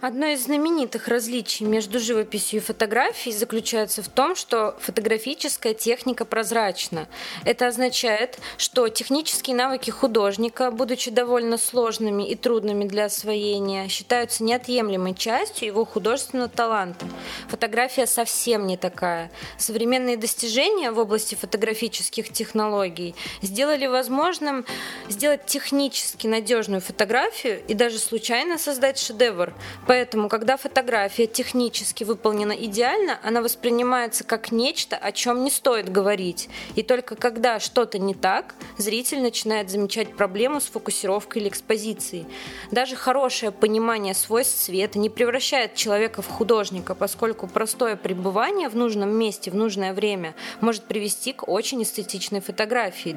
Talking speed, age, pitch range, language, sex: 125 wpm, 20-39, 210-250 Hz, Russian, female